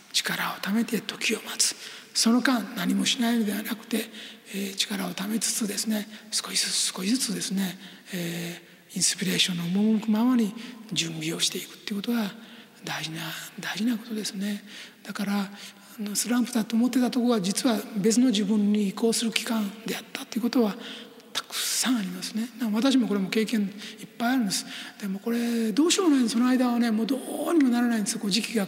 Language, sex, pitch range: Japanese, male, 200-235 Hz